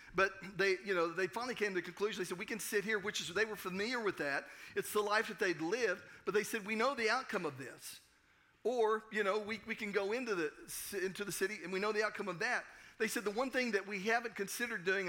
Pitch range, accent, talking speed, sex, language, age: 180-225 Hz, American, 265 wpm, male, English, 50-69